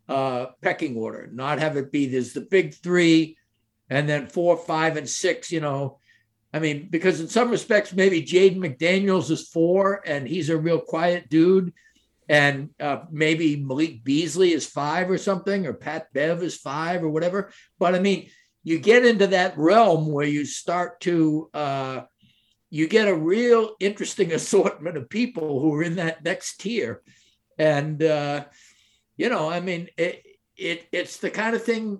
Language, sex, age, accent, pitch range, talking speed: English, male, 60-79, American, 150-190 Hz, 175 wpm